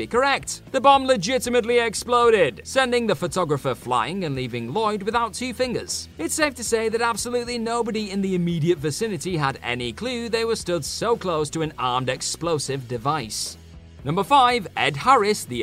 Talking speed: 170 wpm